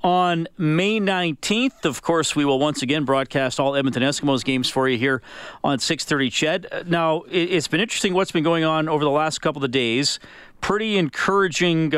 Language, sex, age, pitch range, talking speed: English, male, 40-59, 125-155 Hz, 180 wpm